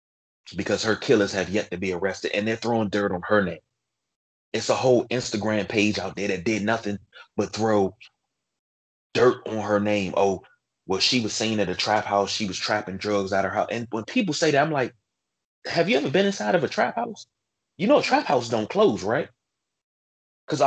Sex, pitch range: male, 100-135 Hz